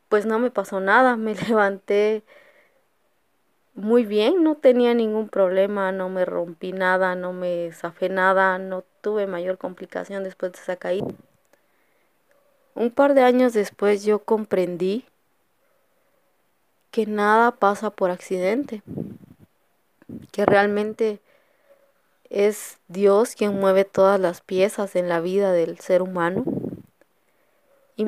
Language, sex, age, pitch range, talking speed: Spanish, female, 20-39, 190-235 Hz, 120 wpm